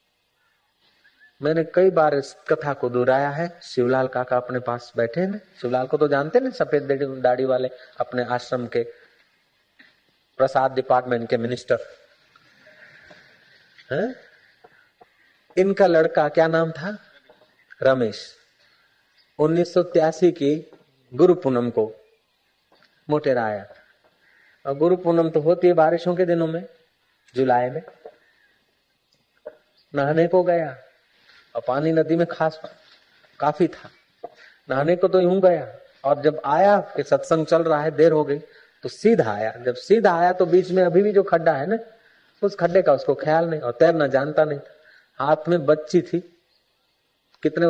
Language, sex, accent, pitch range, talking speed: Hindi, male, native, 140-180 Hz, 140 wpm